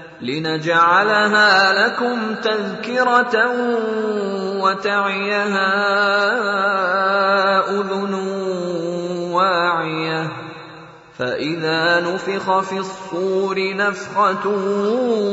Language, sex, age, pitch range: Indonesian, male, 30-49, 190-205 Hz